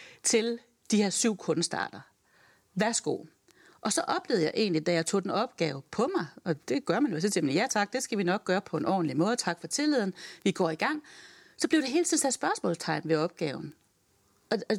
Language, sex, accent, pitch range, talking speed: Danish, female, native, 170-235 Hz, 215 wpm